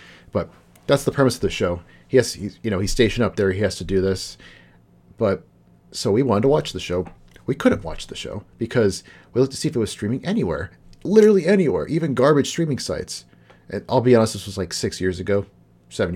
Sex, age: male, 40-59